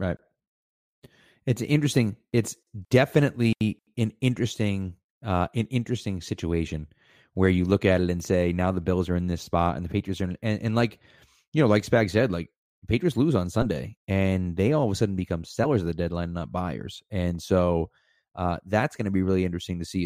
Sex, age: male, 30-49